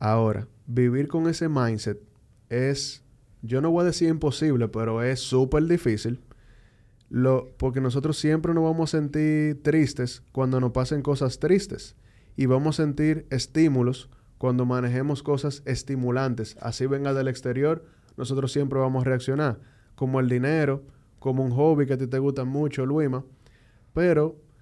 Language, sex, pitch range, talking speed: Spanish, male, 125-150 Hz, 150 wpm